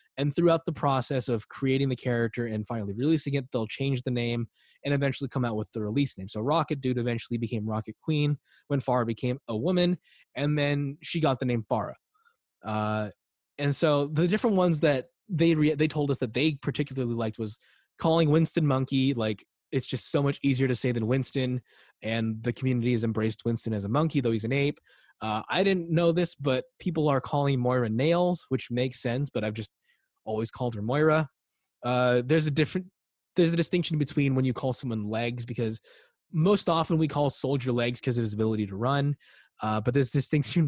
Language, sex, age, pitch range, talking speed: English, male, 20-39, 120-155 Hz, 205 wpm